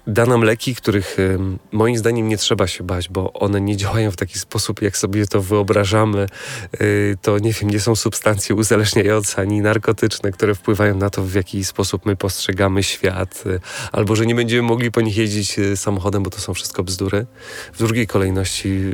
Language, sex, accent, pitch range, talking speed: Polish, male, native, 100-110 Hz, 190 wpm